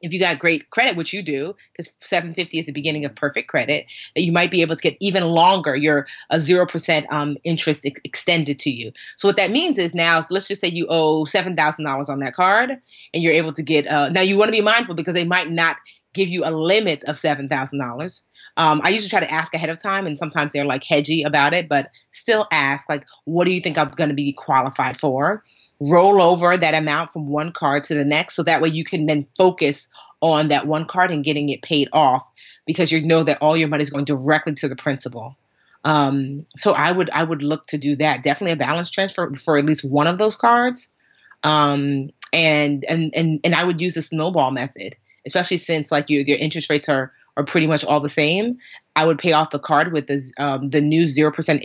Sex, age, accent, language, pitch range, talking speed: female, 30-49, American, English, 145-175 Hz, 235 wpm